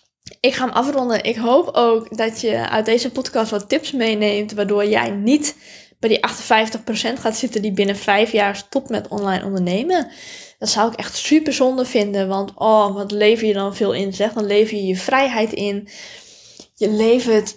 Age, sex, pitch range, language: 10-29, female, 205-250 Hz, Dutch